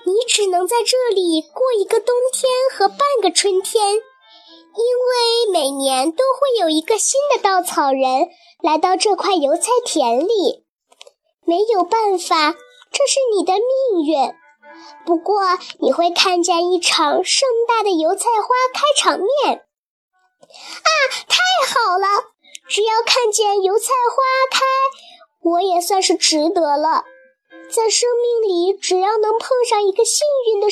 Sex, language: male, Chinese